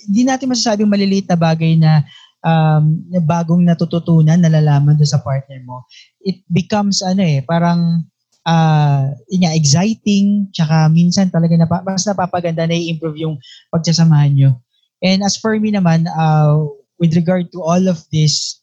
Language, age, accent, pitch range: English, 20-39, Filipino, 150-180 Hz